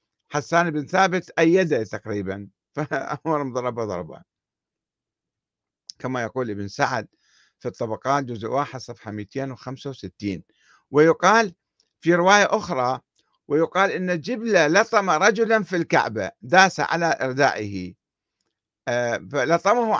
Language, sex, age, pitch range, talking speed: Arabic, male, 50-69, 125-175 Hz, 100 wpm